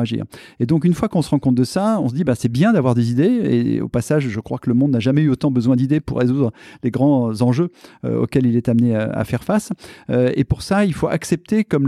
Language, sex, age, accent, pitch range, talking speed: French, male, 40-59, French, 125-170 Hz, 280 wpm